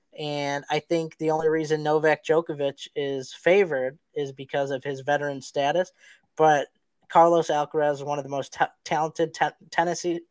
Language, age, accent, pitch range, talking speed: English, 20-39, American, 150-170 Hz, 165 wpm